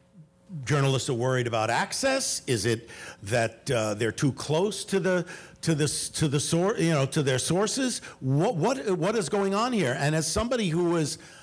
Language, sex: English, male